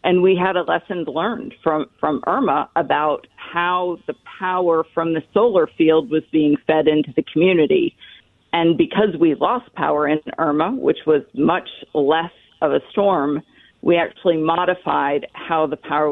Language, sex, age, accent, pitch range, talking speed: English, female, 40-59, American, 150-180 Hz, 160 wpm